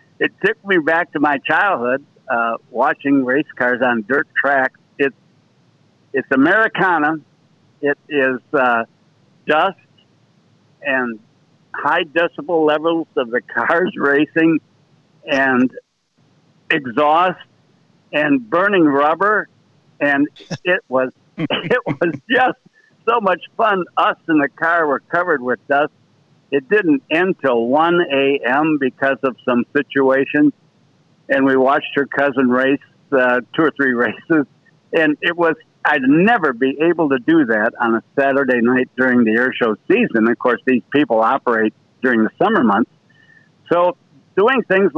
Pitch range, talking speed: 130-165 Hz, 135 wpm